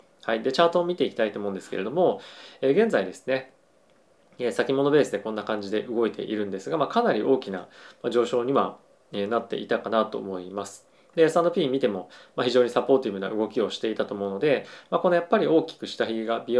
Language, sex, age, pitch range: Japanese, male, 20-39, 105-155 Hz